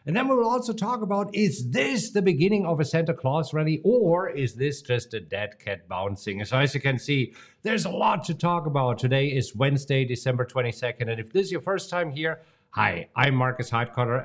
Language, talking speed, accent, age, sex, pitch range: English, 220 wpm, German, 50-69, male, 115-165 Hz